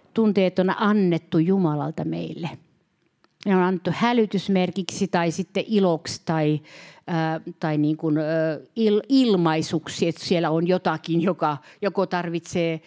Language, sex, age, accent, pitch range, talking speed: Finnish, female, 50-69, native, 160-190 Hz, 125 wpm